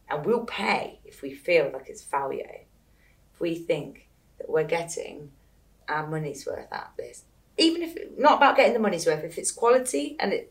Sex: female